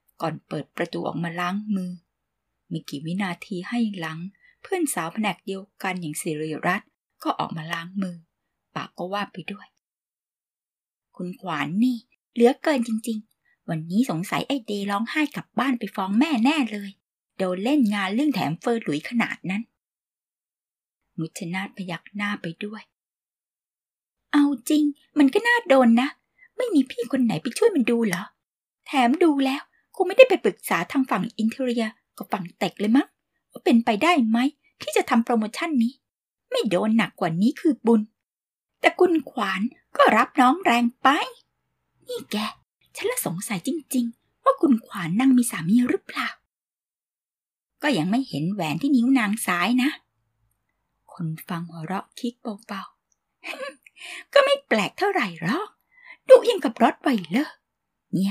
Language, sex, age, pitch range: Thai, female, 20-39, 190-275 Hz